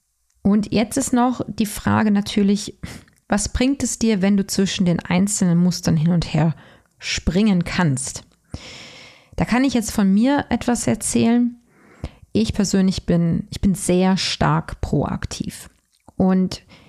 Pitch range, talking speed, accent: 175-230 Hz, 140 wpm, German